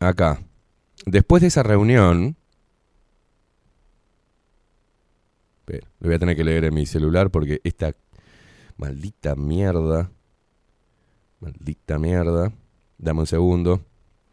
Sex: male